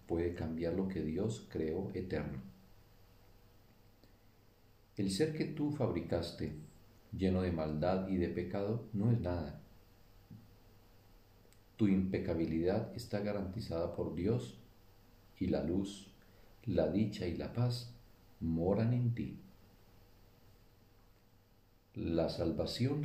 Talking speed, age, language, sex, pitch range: 105 wpm, 50-69, Spanish, male, 95-115 Hz